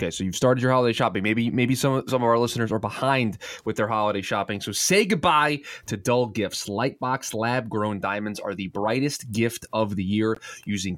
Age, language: 20-39, English